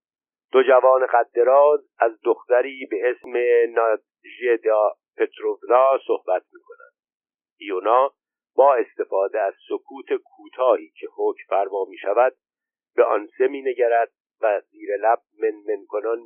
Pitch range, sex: 285-450 Hz, male